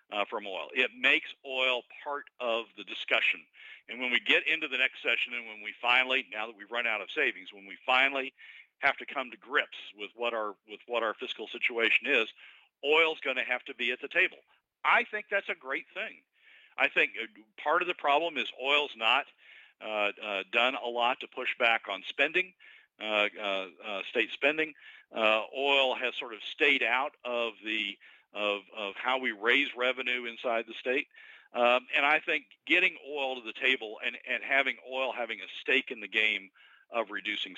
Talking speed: 195 wpm